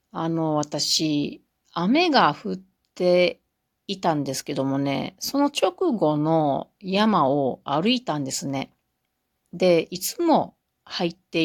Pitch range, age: 140-205 Hz, 40-59